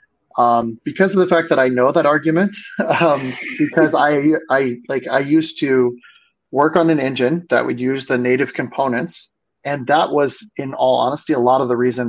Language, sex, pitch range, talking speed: English, male, 125-150 Hz, 195 wpm